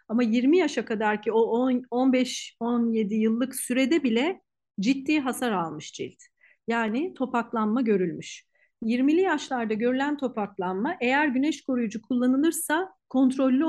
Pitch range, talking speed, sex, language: 220-280 Hz, 110 wpm, female, Turkish